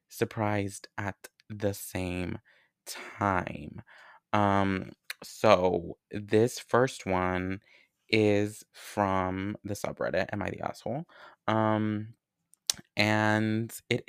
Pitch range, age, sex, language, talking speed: 95-115 Hz, 20-39, male, English, 90 wpm